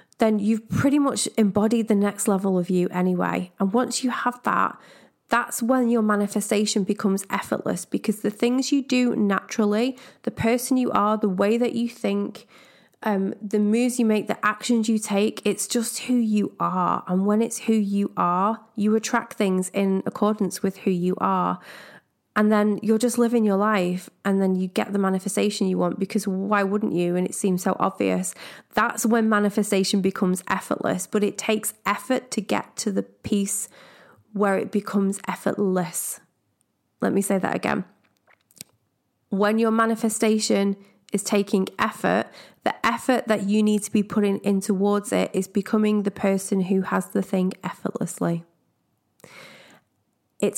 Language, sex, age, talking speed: English, female, 30-49, 165 wpm